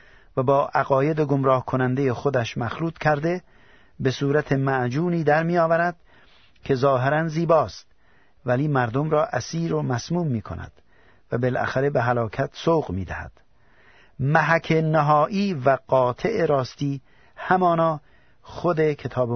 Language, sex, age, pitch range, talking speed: Persian, male, 50-69, 125-155 Hz, 125 wpm